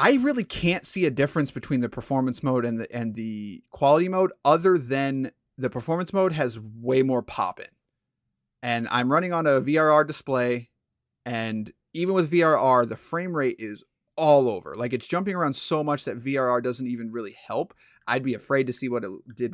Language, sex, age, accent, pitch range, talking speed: English, male, 30-49, American, 125-170 Hz, 190 wpm